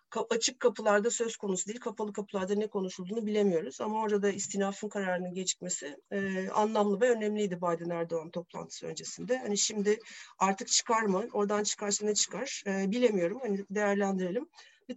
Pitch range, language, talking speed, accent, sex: 195-245 Hz, Turkish, 155 wpm, native, female